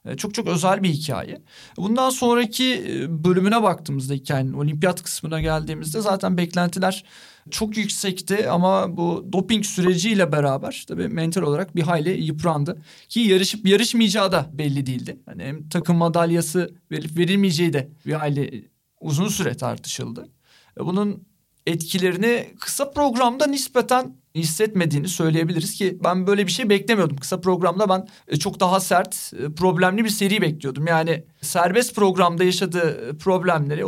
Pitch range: 160-205 Hz